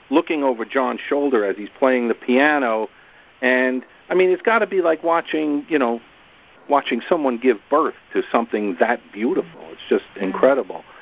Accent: American